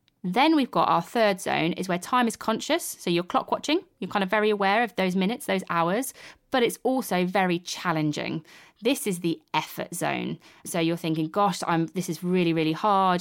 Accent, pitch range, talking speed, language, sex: British, 165-200 Hz, 200 wpm, English, female